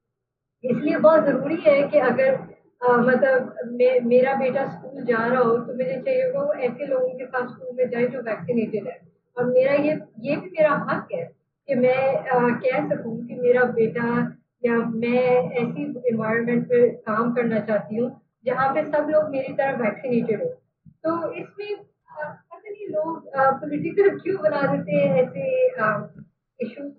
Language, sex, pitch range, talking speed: Hindi, female, 235-295 Hz, 160 wpm